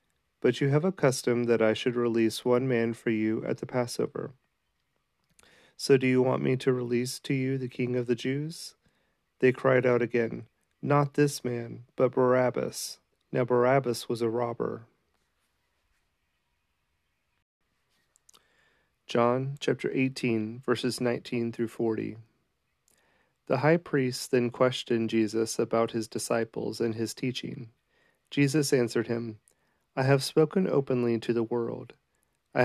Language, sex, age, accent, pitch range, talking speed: English, male, 40-59, American, 115-130 Hz, 135 wpm